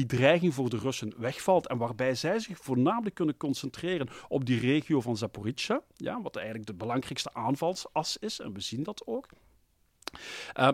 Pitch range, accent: 130-190 Hz, Dutch